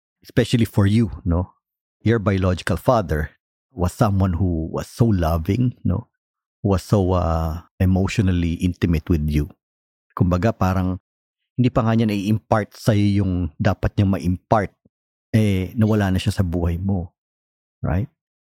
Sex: male